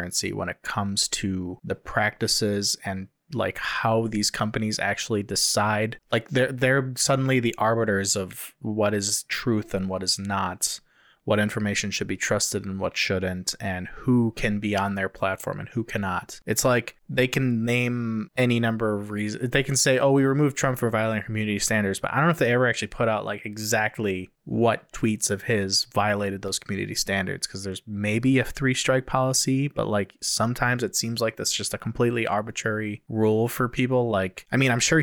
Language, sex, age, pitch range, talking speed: English, male, 20-39, 100-125 Hz, 190 wpm